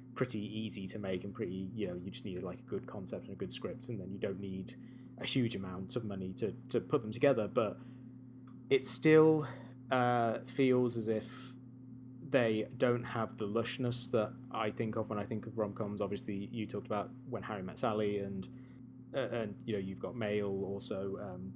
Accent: British